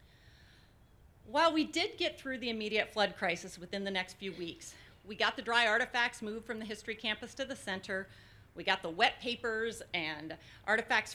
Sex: female